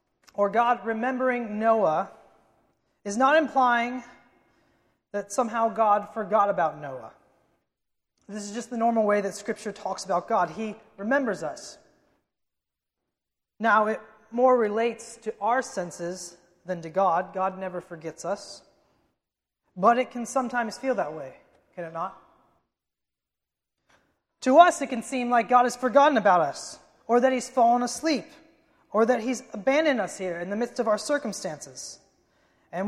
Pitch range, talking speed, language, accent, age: 205-265 Hz, 145 wpm, English, American, 30-49